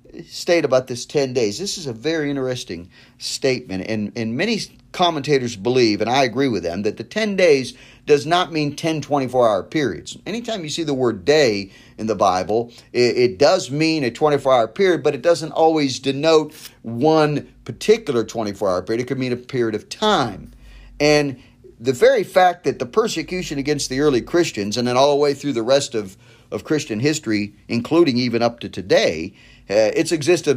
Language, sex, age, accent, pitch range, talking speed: English, male, 50-69, American, 120-155 Hz, 185 wpm